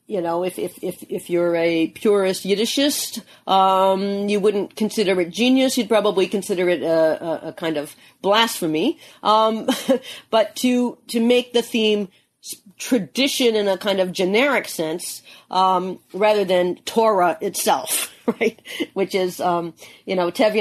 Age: 50-69